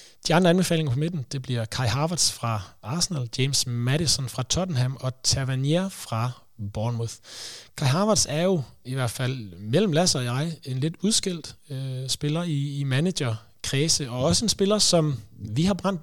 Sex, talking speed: male, 170 wpm